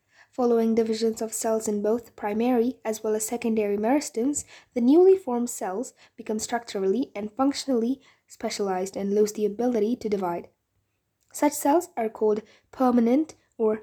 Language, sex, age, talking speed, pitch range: English, female, 20-39, 145 wpm, 205-250 Hz